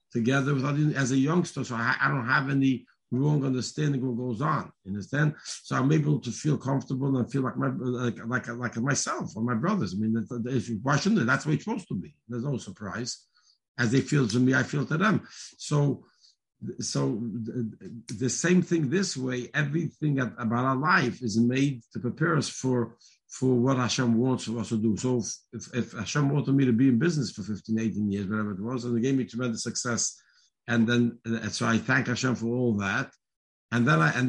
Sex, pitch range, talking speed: male, 120-140 Hz, 215 wpm